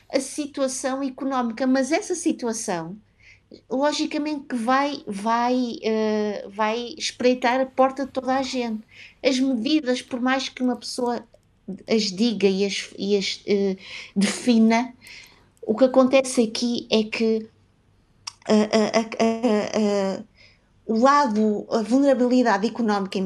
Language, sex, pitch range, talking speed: Portuguese, female, 200-250 Hz, 110 wpm